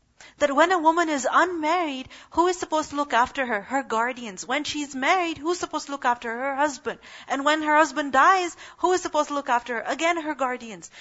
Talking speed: 225 wpm